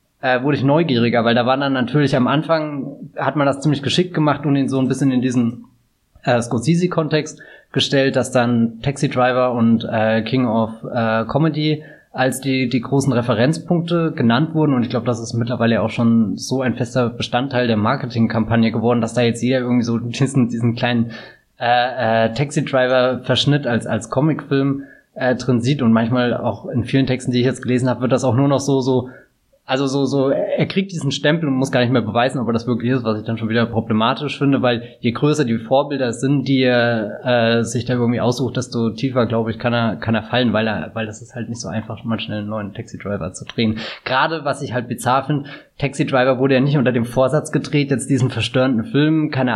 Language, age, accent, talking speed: German, 20-39, German, 215 wpm